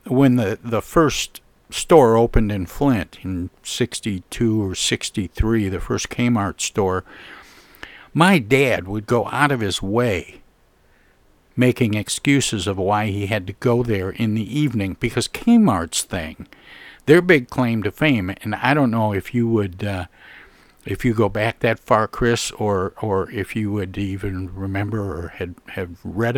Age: 60-79